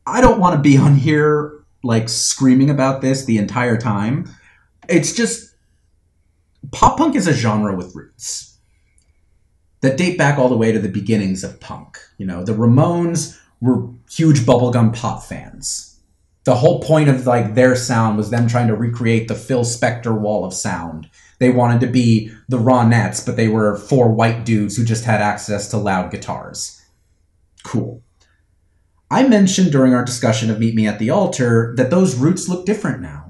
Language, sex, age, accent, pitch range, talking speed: English, male, 30-49, American, 105-145 Hz, 175 wpm